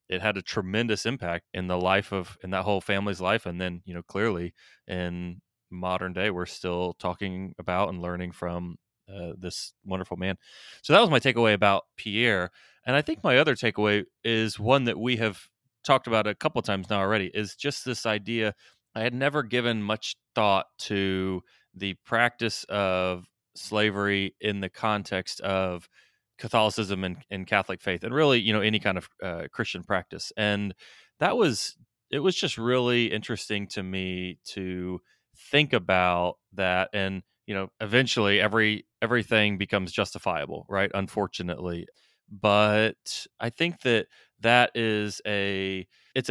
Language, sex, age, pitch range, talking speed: English, male, 20-39, 95-115 Hz, 160 wpm